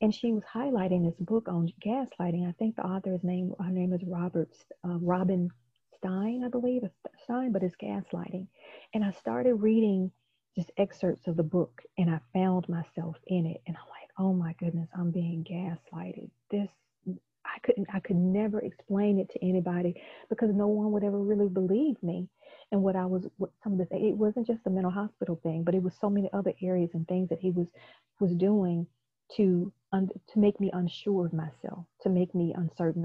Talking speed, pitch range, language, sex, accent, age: 200 wpm, 175-205 Hz, English, female, American, 40-59